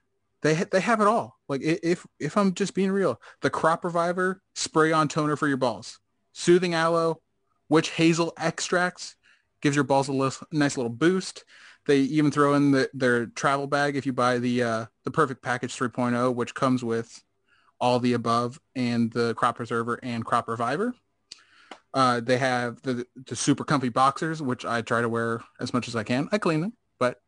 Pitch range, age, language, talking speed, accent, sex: 120-165 Hz, 20-39, English, 185 wpm, American, male